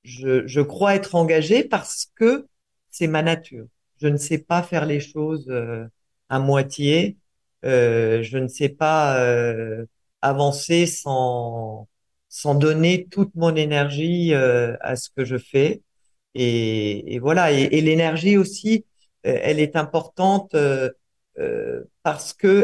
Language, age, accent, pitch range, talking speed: French, 50-69, French, 125-160 Hz, 140 wpm